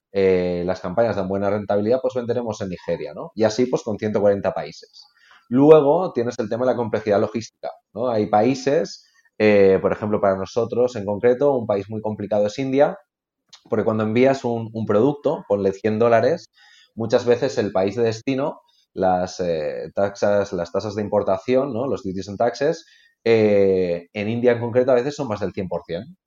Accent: Spanish